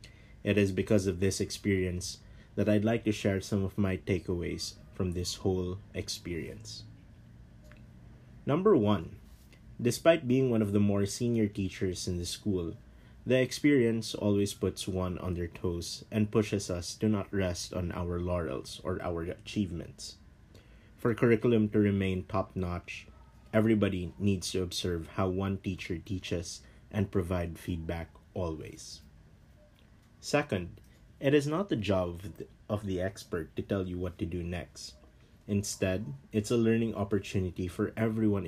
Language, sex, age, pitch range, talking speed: English, male, 20-39, 90-110 Hz, 145 wpm